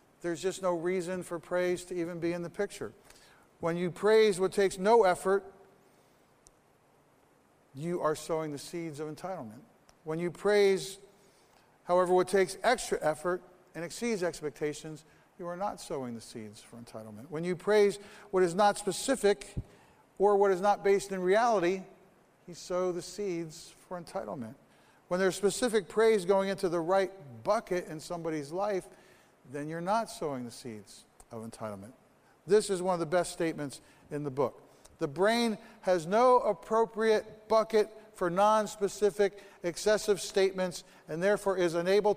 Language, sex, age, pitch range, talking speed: English, male, 50-69, 170-205 Hz, 155 wpm